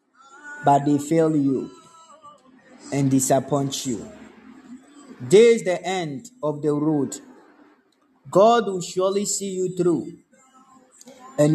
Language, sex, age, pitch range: Japanese, male, 30-49, 170-250 Hz